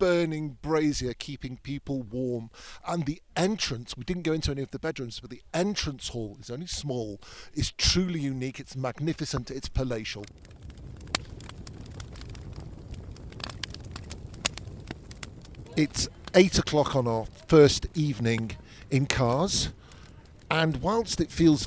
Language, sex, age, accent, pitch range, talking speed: English, male, 50-69, British, 115-150 Hz, 120 wpm